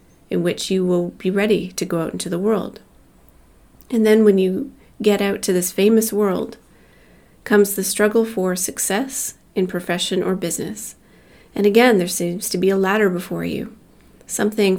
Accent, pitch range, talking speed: American, 180-215 Hz, 170 wpm